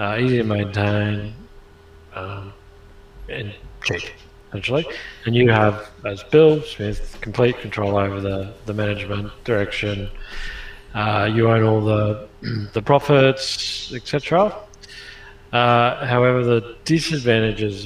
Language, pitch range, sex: English, 95-110 Hz, male